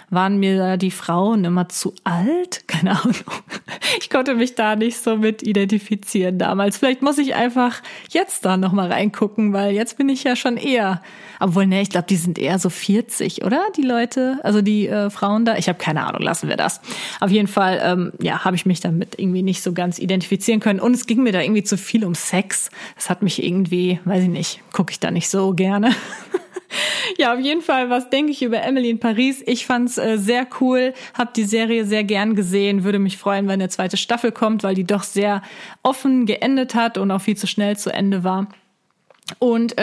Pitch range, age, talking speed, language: 195-235 Hz, 30-49, 215 wpm, German